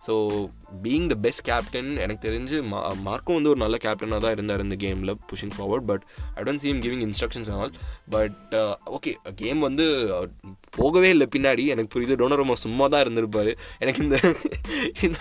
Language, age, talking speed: Tamil, 20-39, 175 wpm